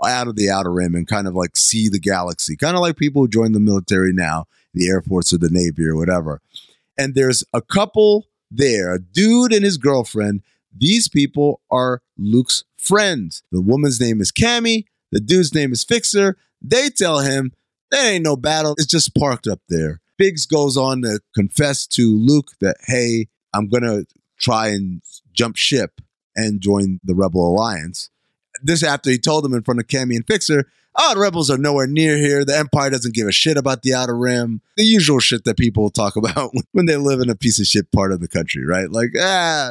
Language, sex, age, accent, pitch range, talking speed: English, male, 30-49, American, 105-175 Hz, 205 wpm